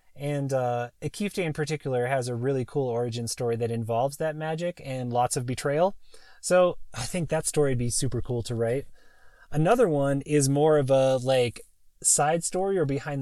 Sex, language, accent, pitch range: male, English, American, 130-165 Hz